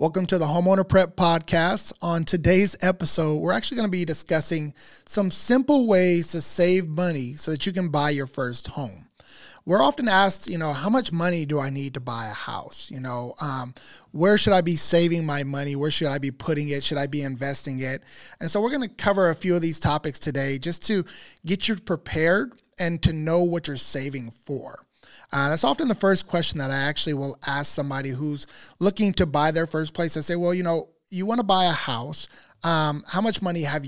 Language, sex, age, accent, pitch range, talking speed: English, male, 20-39, American, 145-185 Hz, 220 wpm